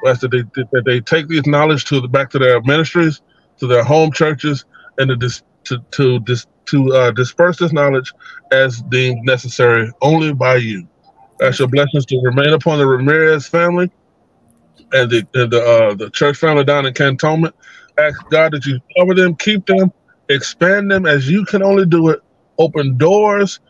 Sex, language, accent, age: male, English, American, 20-39